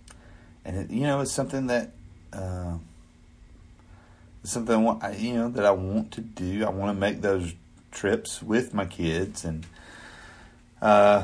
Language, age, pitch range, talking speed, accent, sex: English, 30-49, 80-100 Hz, 155 wpm, American, male